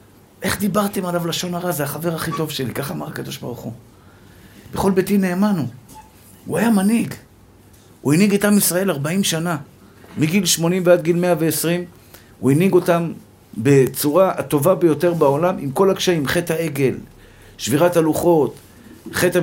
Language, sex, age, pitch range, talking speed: Hebrew, male, 50-69, 125-175 Hz, 145 wpm